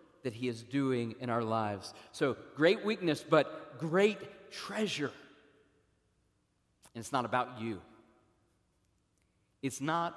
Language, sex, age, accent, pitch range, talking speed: English, male, 40-59, American, 135-190 Hz, 120 wpm